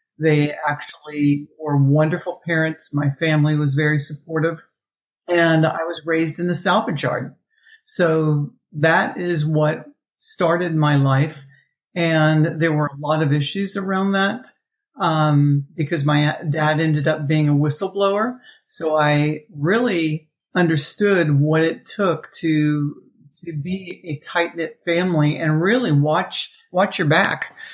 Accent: American